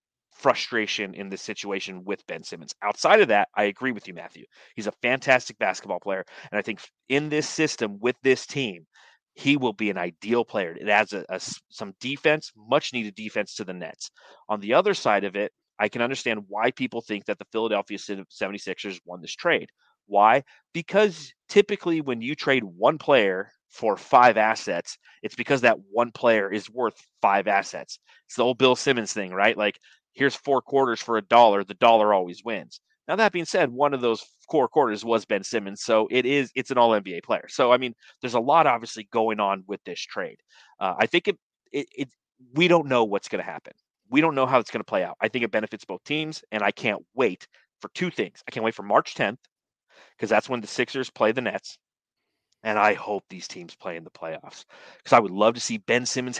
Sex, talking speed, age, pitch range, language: male, 210 wpm, 30-49, 105-135 Hz, English